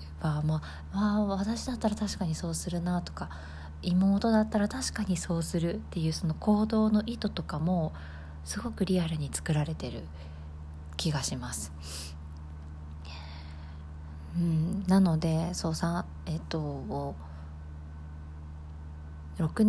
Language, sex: Japanese, female